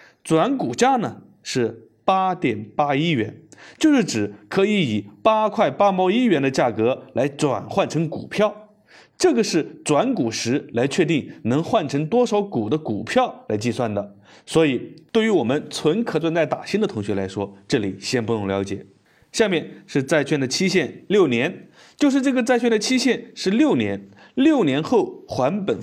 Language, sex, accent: Chinese, male, native